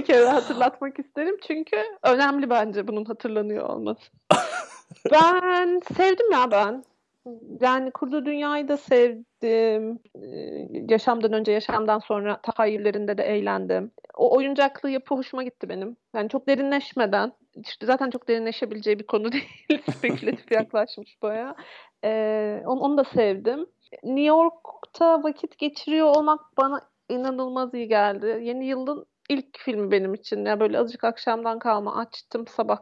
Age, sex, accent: 40-59, female, native